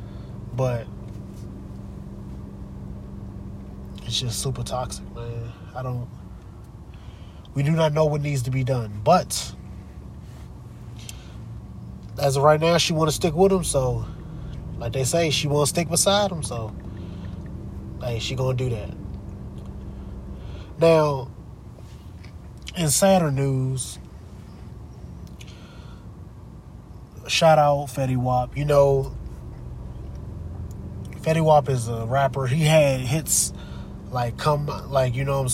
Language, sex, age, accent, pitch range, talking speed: English, male, 20-39, American, 105-140 Hz, 115 wpm